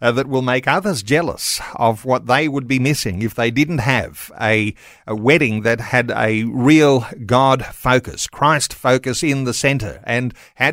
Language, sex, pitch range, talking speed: English, male, 120-145 Hz, 180 wpm